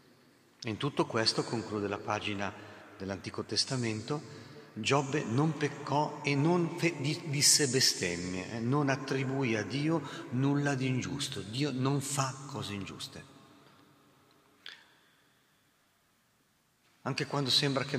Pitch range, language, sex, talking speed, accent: 115-135 Hz, Italian, male, 115 wpm, native